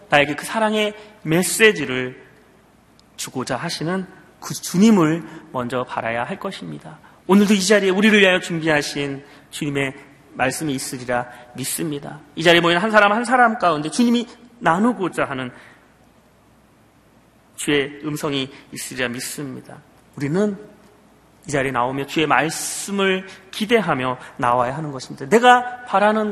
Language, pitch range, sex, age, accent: Korean, 140-210 Hz, male, 30-49, native